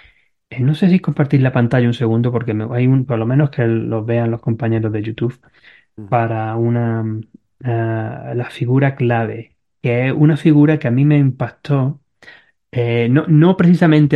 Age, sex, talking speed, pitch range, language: 20-39, male, 170 wpm, 115-140 Hz, Spanish